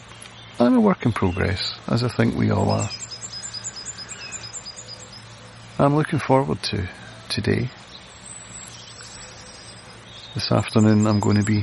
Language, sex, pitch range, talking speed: English, male, 105-120 Hz, 110 wpm